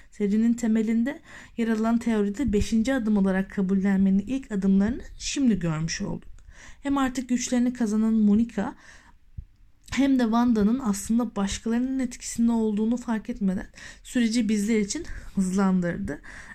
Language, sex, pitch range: Turkish, female, 190-240 Hz